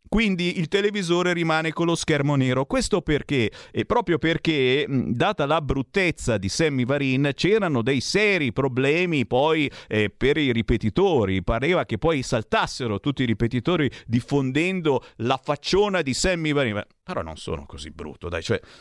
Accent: native